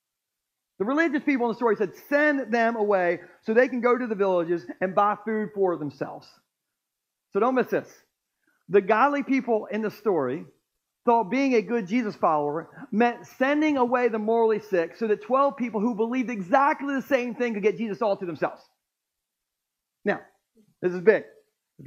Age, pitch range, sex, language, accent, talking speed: 40-59, 200-245 Hz, male, Ukrainian, American, 180 wpm